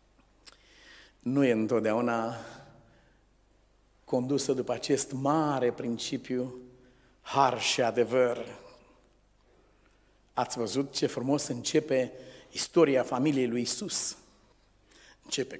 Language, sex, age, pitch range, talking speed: Romanian, male, 50-69, 115-140 Hz, 80 wpm